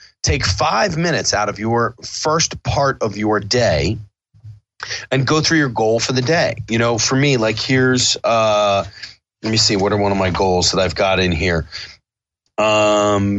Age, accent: 30-49, American